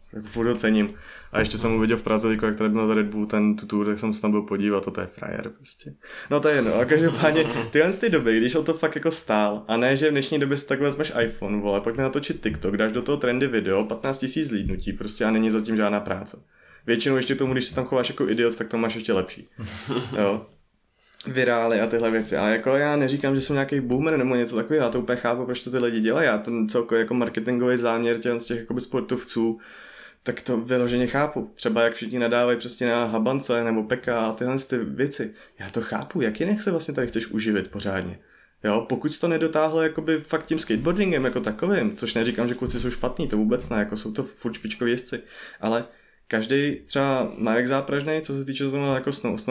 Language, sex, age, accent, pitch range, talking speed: Czech, male, 20-39, native, 110-135 Hz, 220 wpm